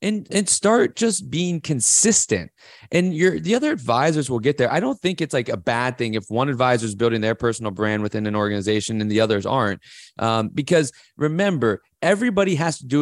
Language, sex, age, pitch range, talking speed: English, male, 20-39, 120-175 Hz, 200 wpm